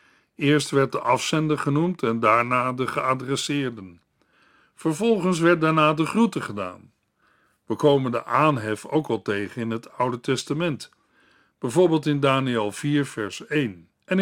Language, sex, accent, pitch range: Dutch, male, Dutch, 130-170 Hz